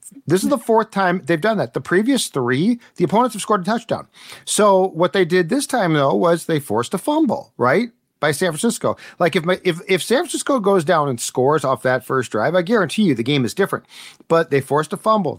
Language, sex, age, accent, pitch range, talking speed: English, male, 40-59, American, 135-185 Hz, 235 wpm